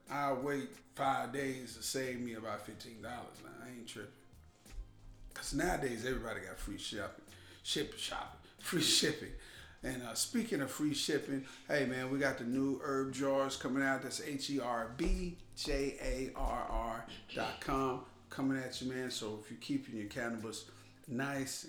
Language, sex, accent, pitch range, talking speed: English, male, American, 115-140 Hz, 145 wpm